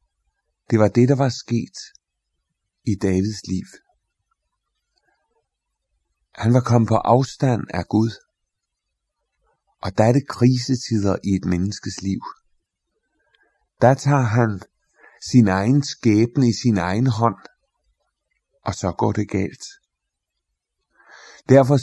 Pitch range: 100-130 Hz